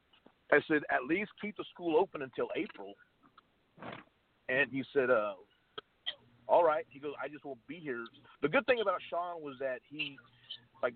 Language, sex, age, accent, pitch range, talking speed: English, male, 40-59, American, 130-165 Hz, 175 wpm